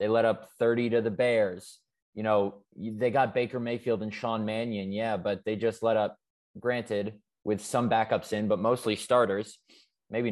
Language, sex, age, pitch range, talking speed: English, male, 20-39, 100-115 Hz, 180 wpm